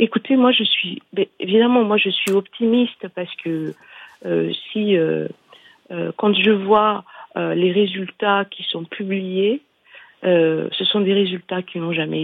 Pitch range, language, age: 165-210 Hz, French, 50-69